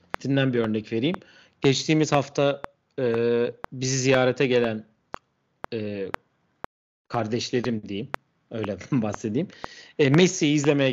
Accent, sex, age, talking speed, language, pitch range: native, male, 40-59, 80 wpm, Turkish, 110-155 Hz